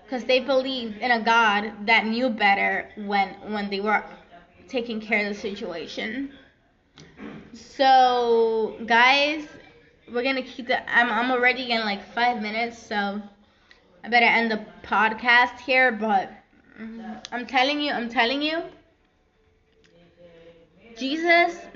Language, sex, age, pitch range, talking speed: English, female, 10-29, 215-255 Hz, 125 wpm